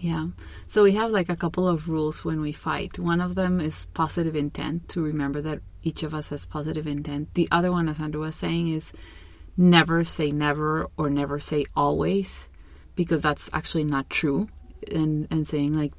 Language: English